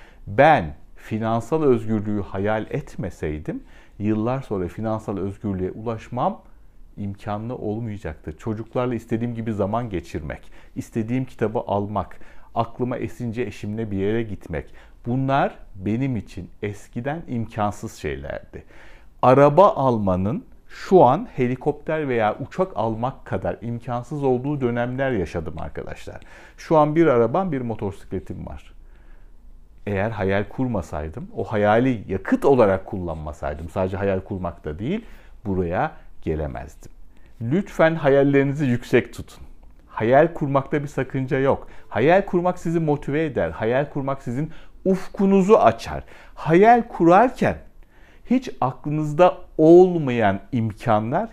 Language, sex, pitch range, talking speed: Turkish, male, 100-145 Hz, 110 wpm